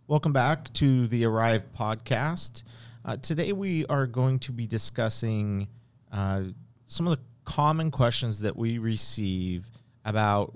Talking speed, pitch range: 135 wpm, 95-130 Hz